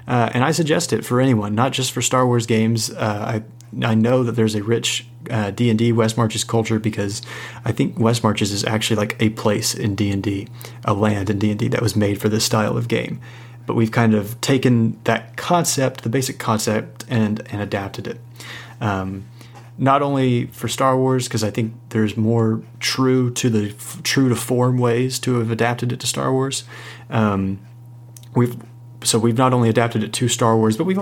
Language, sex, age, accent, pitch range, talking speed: English, male, 30-49, American, 110-120 Hz, 195 wpm